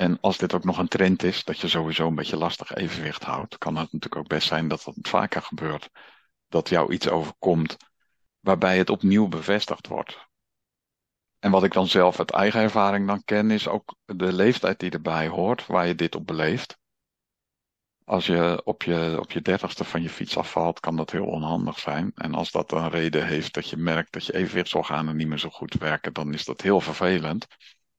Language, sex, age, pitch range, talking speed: Dutch, male, 50-69, 85-100 Hz, 205 wpm